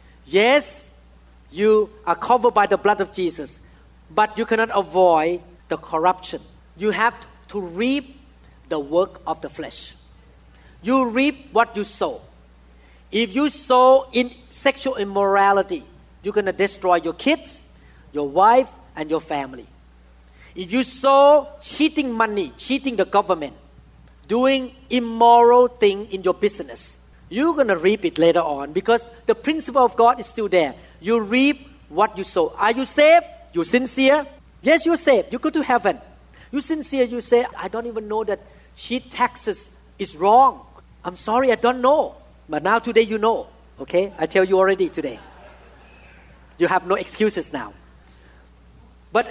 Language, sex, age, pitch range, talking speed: English, male, 40-59, 170-255 Hz, 155 wpm